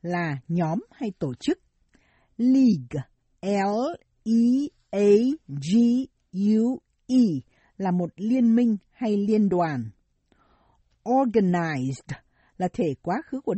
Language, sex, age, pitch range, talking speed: Vietnamese, female, 60-79, 170-240 Hz, 90 wpm